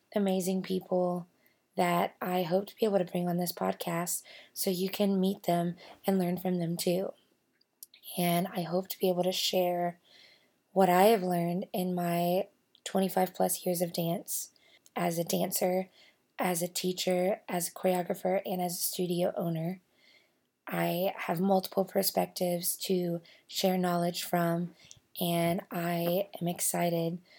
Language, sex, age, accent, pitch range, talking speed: English, female, 20-39, American, 175-195 Hz, 150 wpm